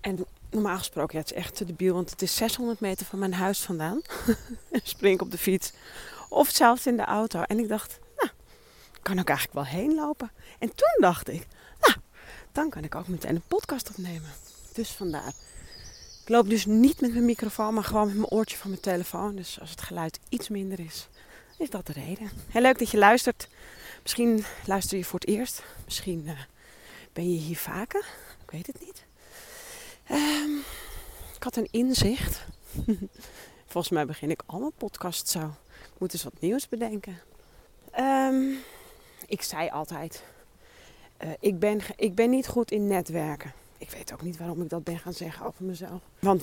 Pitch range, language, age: 180-235 Hz, Dutch, 30-49